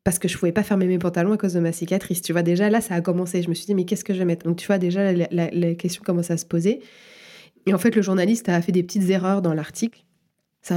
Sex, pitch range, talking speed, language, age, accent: female, 165-195 Hz, 310 wpm, French, 20-39, French